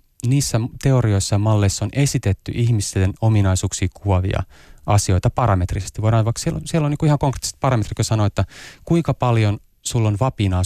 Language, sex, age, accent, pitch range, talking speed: Finnish, male, 30-49, native, 95-115 Hz, 170 wpm